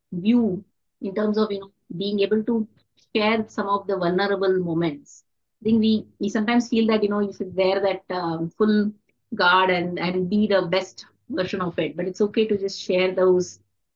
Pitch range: 175-215 Hz